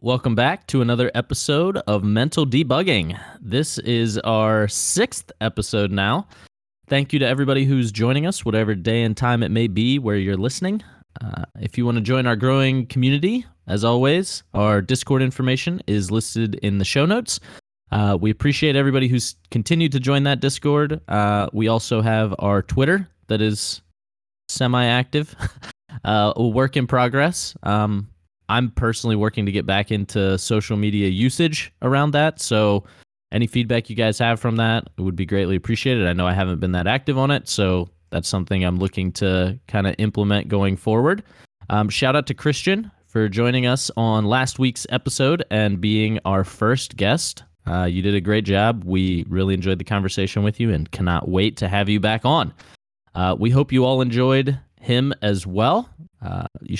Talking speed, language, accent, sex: 175 wpm, English, American, male